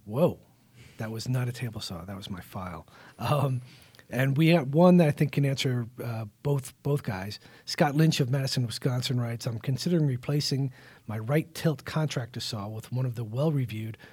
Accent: American